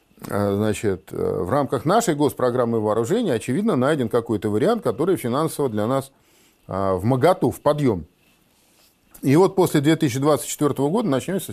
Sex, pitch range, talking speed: male, 105-145 Hz, 125 wpm